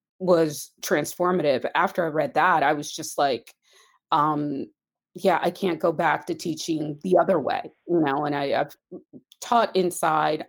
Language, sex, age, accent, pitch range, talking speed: English, female, 30-49, American, 145-185 Hz, 160 wpm